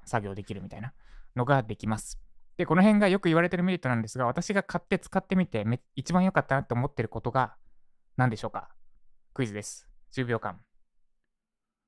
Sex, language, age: male, Japanese, 20-39